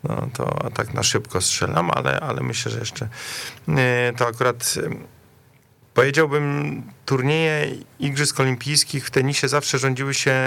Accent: native